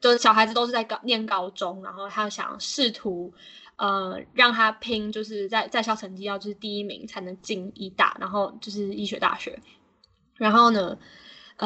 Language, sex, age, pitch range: Chinese, female, 10-29, 200-250 Hz